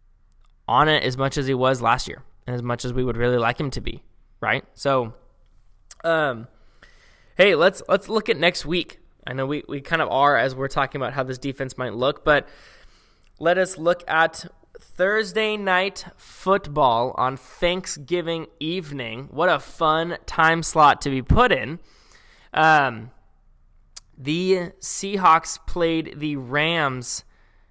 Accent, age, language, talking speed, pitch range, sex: American, 20-39, English, 155 wpm, 125-160 Hz, male